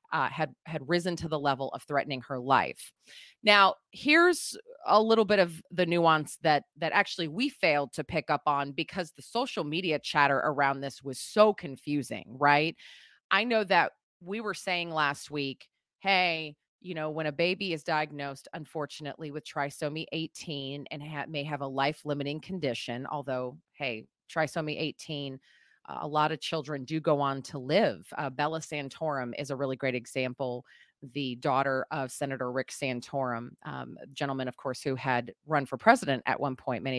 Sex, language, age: female, English, 30-49